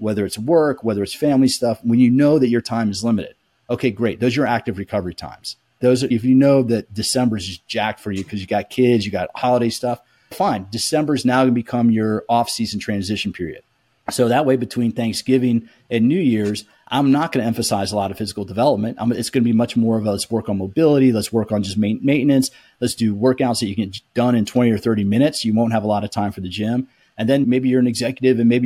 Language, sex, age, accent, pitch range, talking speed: English, male, 30-49, American, 105-125 Hz, 255 wpm